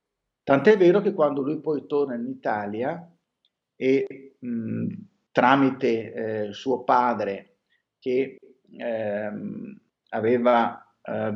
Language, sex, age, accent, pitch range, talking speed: Italian, male, 40-59, native, 115-140 Hz, 100 wpm